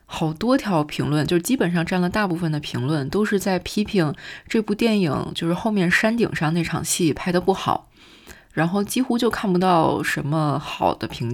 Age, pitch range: 20-39, 160-200 Hz